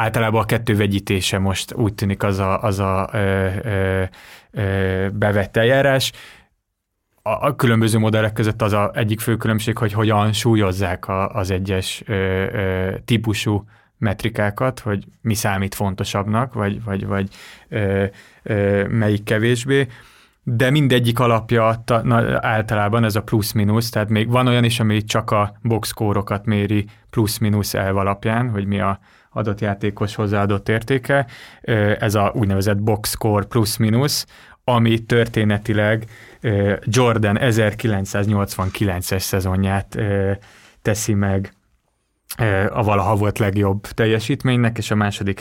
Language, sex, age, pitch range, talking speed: Hungarian, male, 30-49, 100-115 Hz, 125 wpm